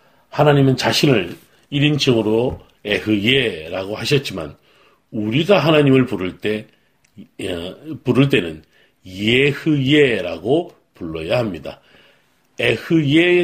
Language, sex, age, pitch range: Korean, male, 40-59, 105-150 Hz